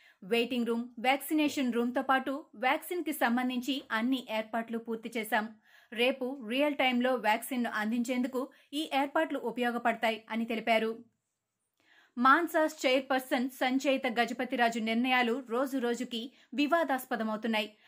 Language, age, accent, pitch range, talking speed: Telugu, 30-49, native, 230-275 Hz, 105 wpm